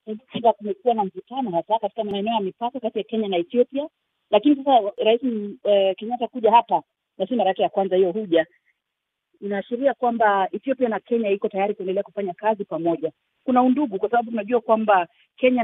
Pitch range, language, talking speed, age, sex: 190-225 Hz, Swahili, 170 wpm, 40-59, female